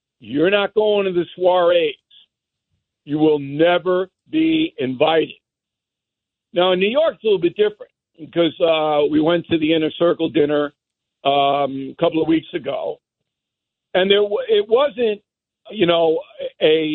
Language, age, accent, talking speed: English, 60-79, American, 150 wpm